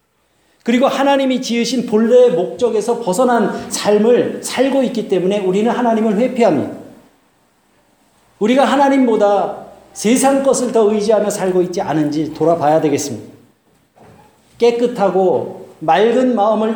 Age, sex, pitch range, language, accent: 40-59, male, 180-235 Hz, Korean, native